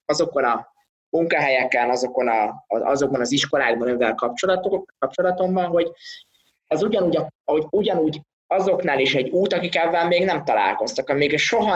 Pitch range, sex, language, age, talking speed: 135-180 Hz, male, Hungarian, 20-39, 135 wpm